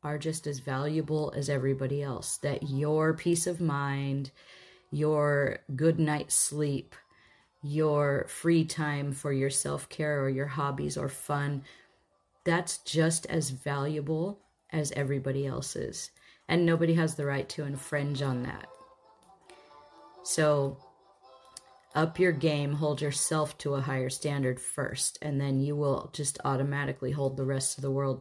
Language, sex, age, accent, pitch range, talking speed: English, female, 30-49, American, 140-160 Hz, 145 wpm